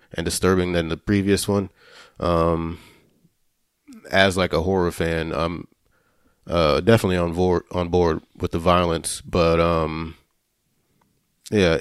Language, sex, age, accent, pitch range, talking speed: English, male, 30-49, American, 85-95 Hz, 125 wpm